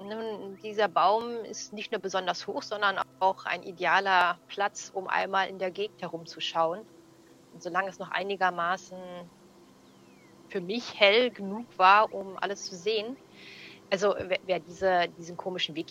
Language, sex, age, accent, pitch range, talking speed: German, female, 30-49, German, 170-205 Hz, 145 wpm